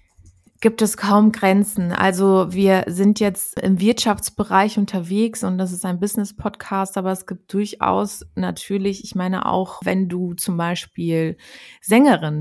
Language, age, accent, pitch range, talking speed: German, 30-49, German, 185-220 Hz, 140 wpm